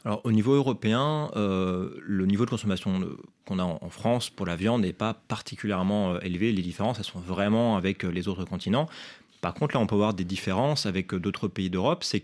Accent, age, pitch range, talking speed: French, 30-49, 95-125 Hz, 210 wpm